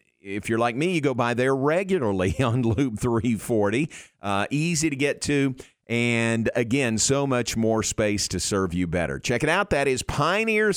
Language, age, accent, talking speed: English, 50-69, American, 185 wpm